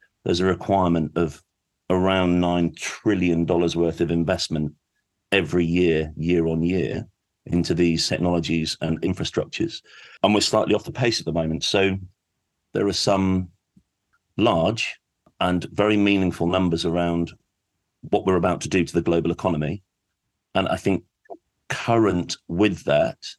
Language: English